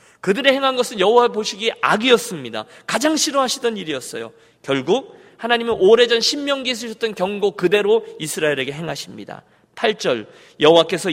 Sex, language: male, Korean